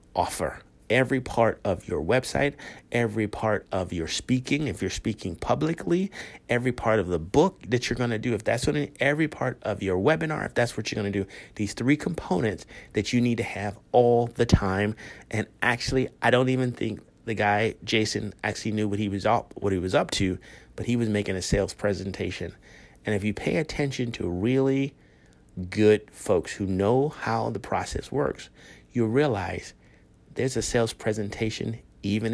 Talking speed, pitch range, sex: 185 wpm, 95-125 Hz, male